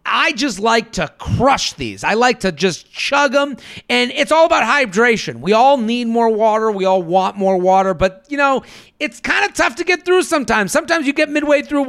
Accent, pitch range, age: American, 190-270 Hz, 40-59